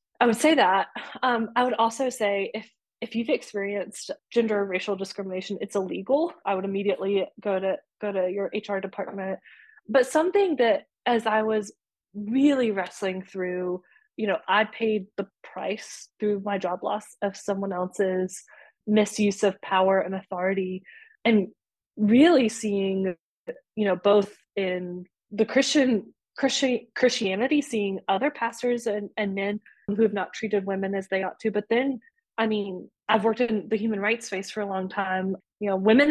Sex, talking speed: female, 165 wpm